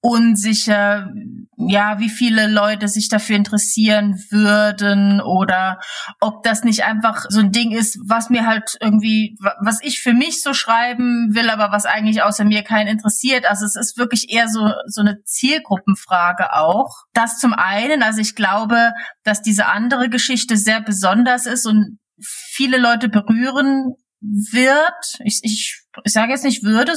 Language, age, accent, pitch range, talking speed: German, 30-49, German, 210-245 Hz, 160 wpm